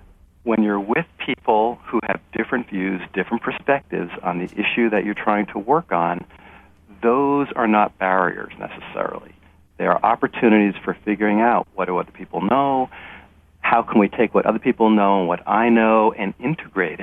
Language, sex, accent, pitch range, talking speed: English, male, American, 90-115 Hz, 175 wpm